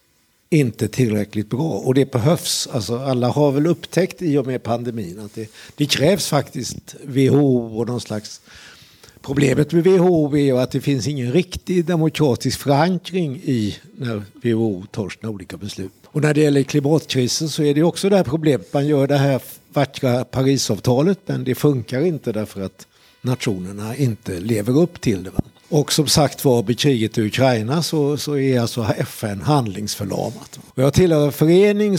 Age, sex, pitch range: 60-79, male, 115-150 Hz